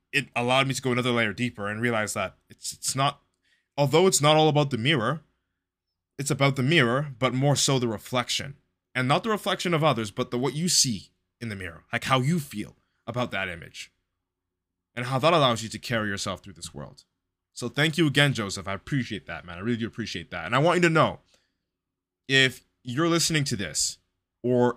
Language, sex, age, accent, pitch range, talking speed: English, male, 20-39, American, 95-135 Hz, 215 wpm